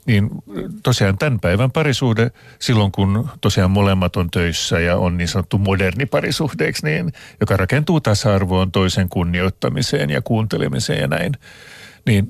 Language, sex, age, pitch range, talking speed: Finnish, male, 50-69, 100-135 Hz, 135 wpm